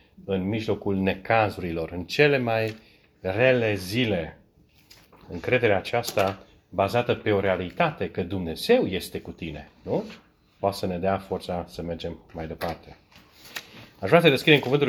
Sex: male